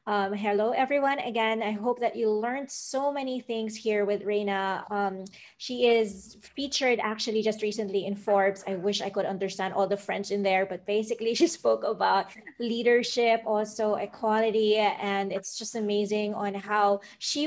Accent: Filipino